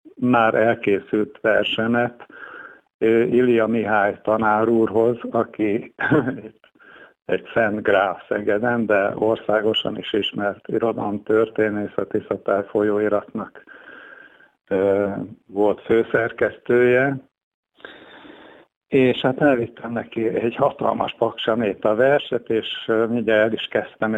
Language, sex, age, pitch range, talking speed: Hungarian, male, 50-69, 105-120 Hz, 85 wpm